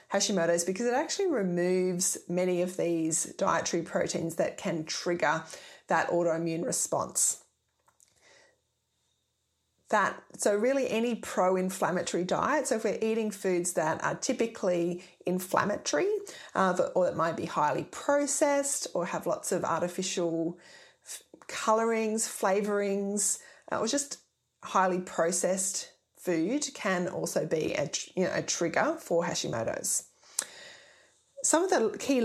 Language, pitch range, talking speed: English, 180-245 Hz, 120 wpm